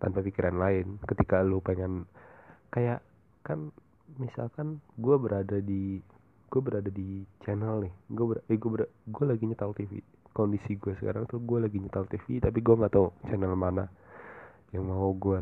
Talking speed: 165 wpm